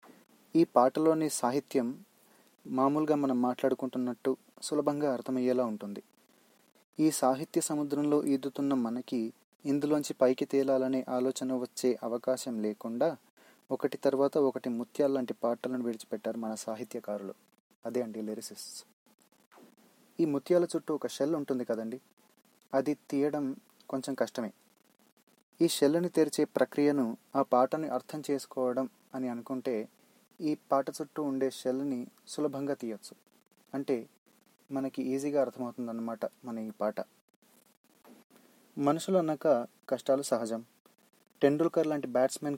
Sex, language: male, Telugu